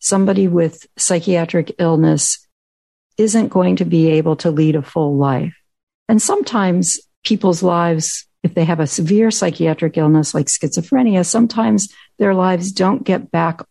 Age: 50-69